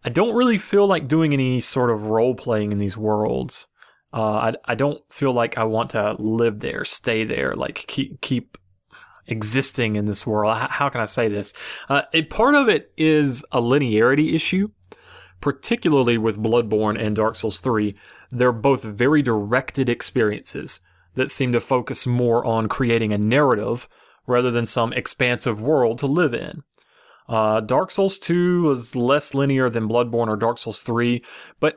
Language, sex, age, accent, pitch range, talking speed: English, male, 30-49, American, 110-145 Hz, 170 wpm